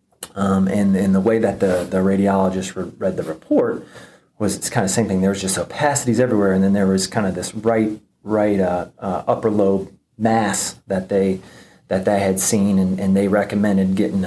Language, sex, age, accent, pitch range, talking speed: English, male, 30-49, American, 95-105 Hz, 205 wpm